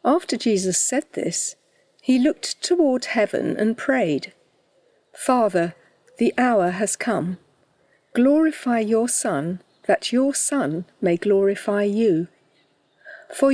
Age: 50-69